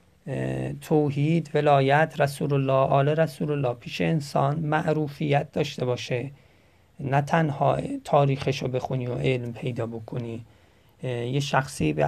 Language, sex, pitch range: Persian, male, 130-155 Hz